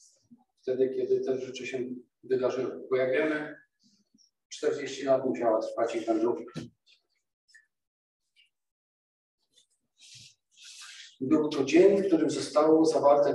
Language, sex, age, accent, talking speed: Polish, male, 40-59, native, 95 wpm